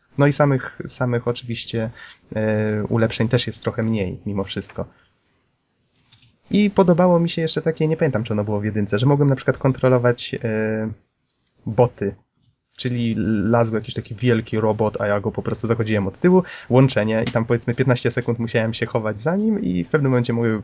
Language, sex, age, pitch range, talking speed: Polish, male, 20-39, 110-145 Hz, 185 wpm